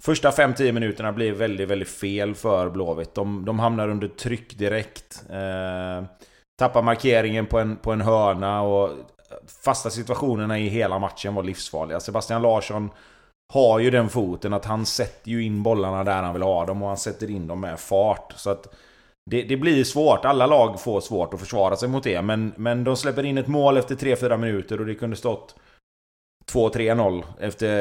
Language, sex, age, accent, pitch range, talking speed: Swedish, male, 30-49, native, 100-125 Hz, 185 wpm